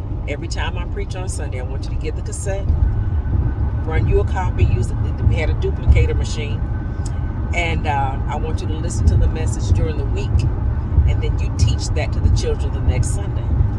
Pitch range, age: 90-100 Hz, 40-59